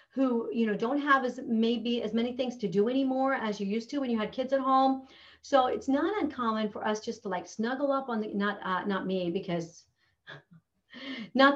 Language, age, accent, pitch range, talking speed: English, 40-59, American, 200-270 Hz, 220 wpm